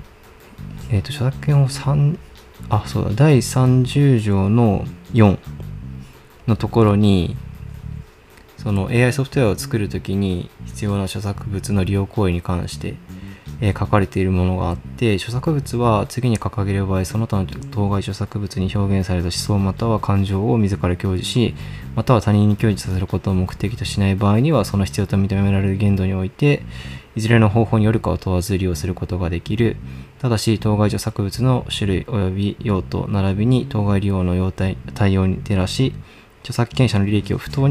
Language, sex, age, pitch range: Japanese, male, 20-39, 95-115 Hz